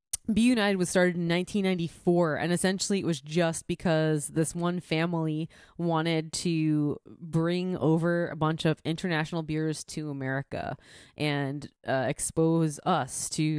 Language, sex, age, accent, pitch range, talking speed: English, female, 20-39, American, 150-180 Hz, 135 wpm